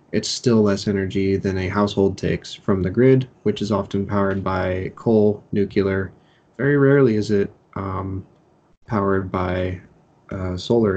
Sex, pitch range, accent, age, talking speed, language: male, 95-115 Hz, American, 20-39, 150 wpm, English